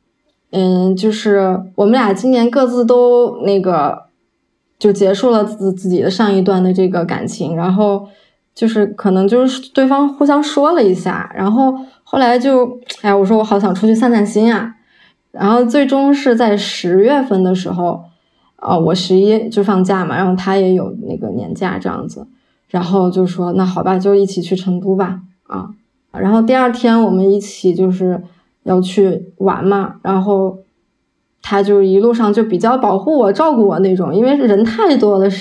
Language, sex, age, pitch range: Chinese, female, 20-39, 190-235 Hz